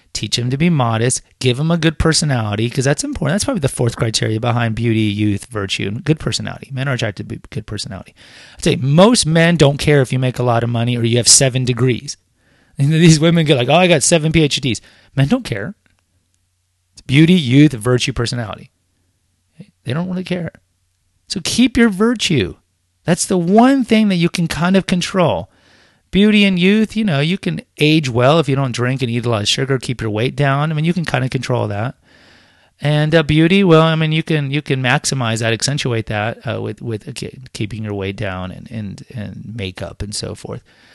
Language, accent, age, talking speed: English, American, 30-49, 210 wpm